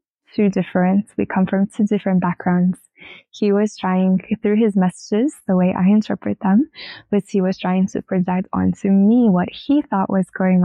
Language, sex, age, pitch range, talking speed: English, female, 10-29, 185-205 Hz, 180 wpm